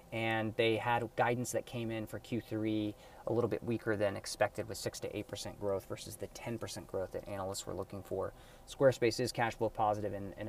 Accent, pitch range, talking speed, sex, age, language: American, 100-120 Hz, 210 wpm, male, 20-39, English